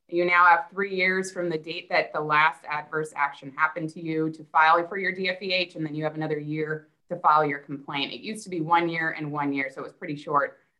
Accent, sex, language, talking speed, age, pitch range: American, female, English, 250 wpm, 20-39, 160-190 Hz